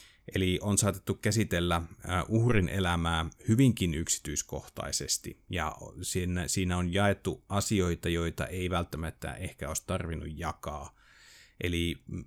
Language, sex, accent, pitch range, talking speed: Finnish, male, native, 85-100 Hz, 105 wpm